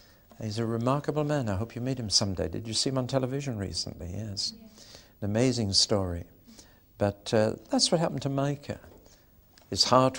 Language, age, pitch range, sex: English, 60-79, 105-145 Hz, male